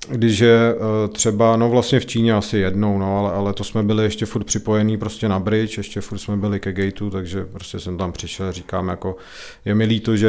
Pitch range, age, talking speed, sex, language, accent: 95-110 Hz, 40-59, 230 wpm, male, Czech, native